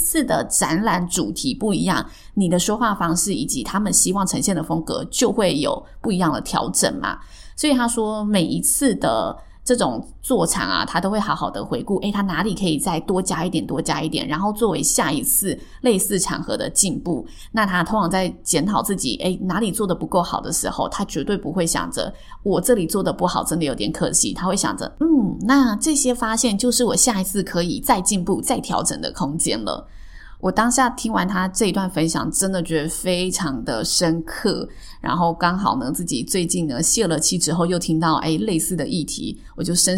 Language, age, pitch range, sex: Chinese, 20-39, 165-215 Hz, female